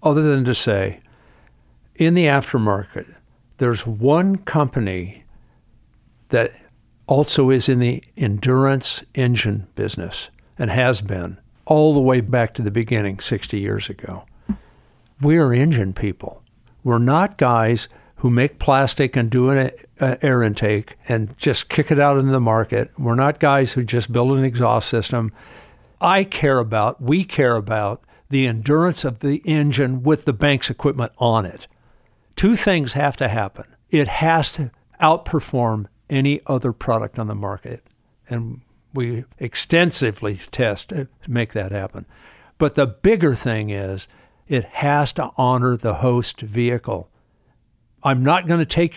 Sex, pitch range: male, 115-145 Hz